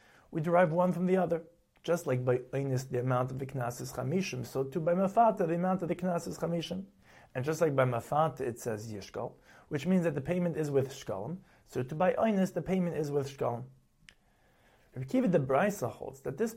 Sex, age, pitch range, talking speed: male, 30-49, 135-180 Hz, 210 wpm